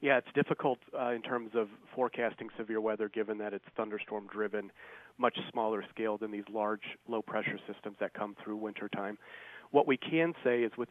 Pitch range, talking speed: 105-120 Hz, 175 wpm